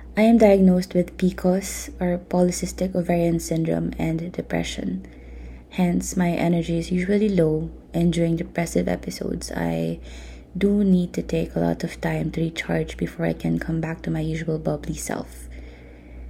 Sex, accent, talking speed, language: female, Filipino, 155 wpm, English